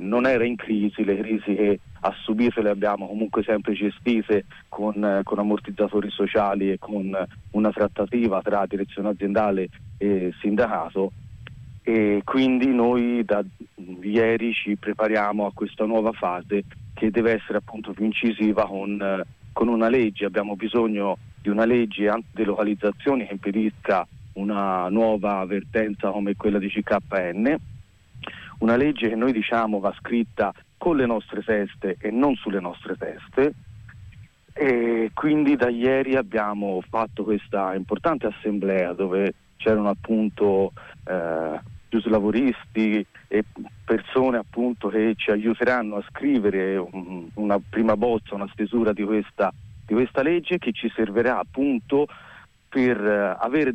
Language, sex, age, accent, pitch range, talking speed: Italian, male, 40-59, native, 100-115 Hz, 130 wpm